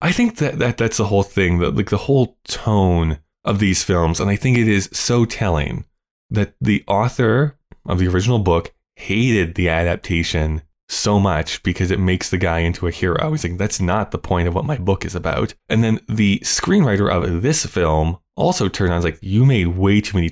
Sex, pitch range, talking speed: male, 85-110 Hz, 210 wpm